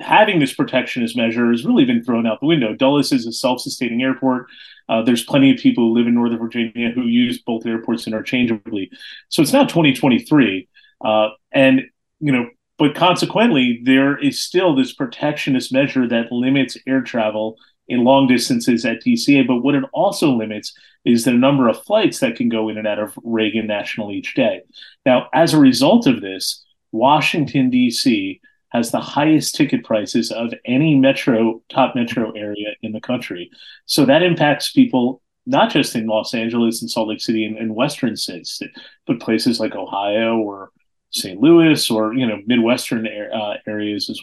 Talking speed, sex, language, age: 175 wpm, male, English, 30-49